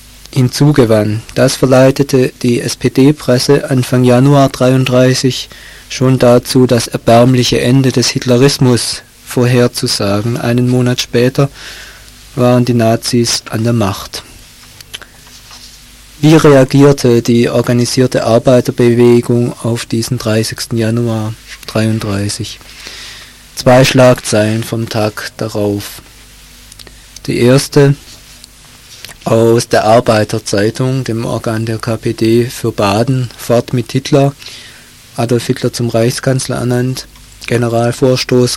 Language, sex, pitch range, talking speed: German, male, 115-130 Hz, 90 wpm